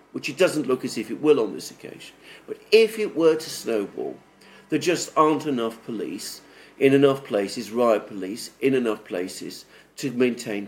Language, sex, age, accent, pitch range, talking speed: English, male, 50-69, British, 125-155 Hz, 180 wpm